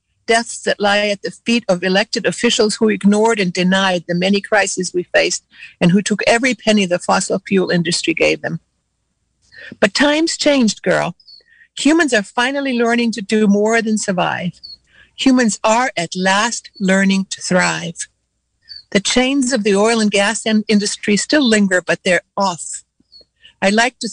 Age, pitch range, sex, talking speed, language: 60-79, 190-235 Hz, female, 160 wpm, English